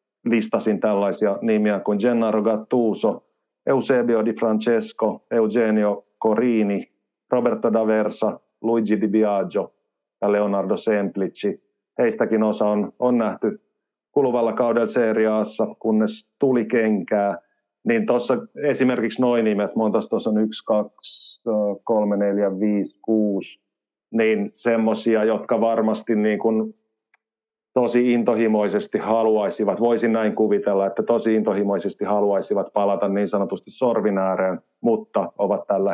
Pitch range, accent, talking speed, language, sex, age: 105-115 Hz, native, 110 wpm, Finnish, male, 50-69